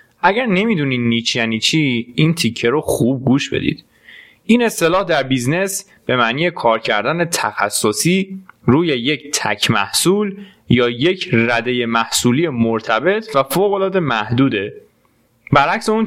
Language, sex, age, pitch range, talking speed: Persian, male, 20-39, 120-175 Hz, 130 wpm